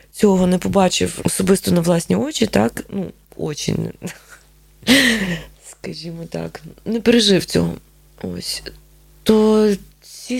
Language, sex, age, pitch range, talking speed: Ukrainian, female, 20-39, 165-210 Hz, 110 wpm